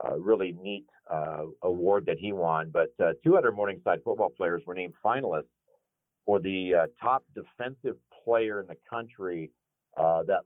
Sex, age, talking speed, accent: male, 50-69, 165 wpm, American